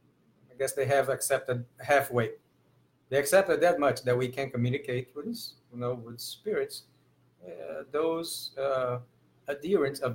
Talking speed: 135 wpm